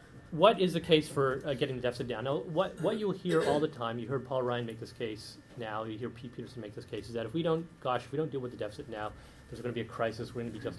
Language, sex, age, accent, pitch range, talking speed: English, male, 40-59, American, 115-145 Hz, 325 wpm